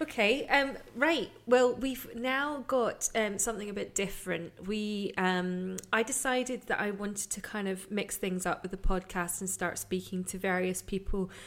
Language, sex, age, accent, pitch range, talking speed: English, female, 20-39, British, 185-215 Hz, 180 wpm